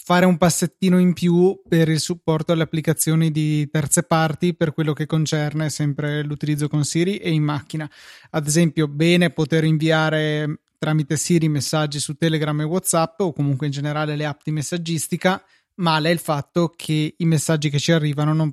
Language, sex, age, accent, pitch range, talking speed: Italian, male, 20-39, native, 150-170 Hz, 175 wpm